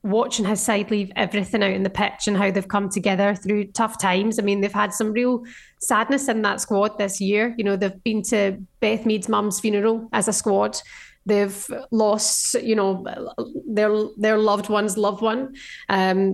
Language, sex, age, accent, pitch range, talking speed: English, female, 20-39, British, 210-245 Hz, 190 wpm